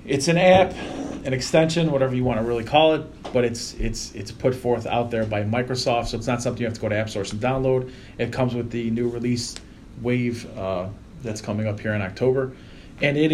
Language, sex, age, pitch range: English, male, 30-49, 115-145 Hz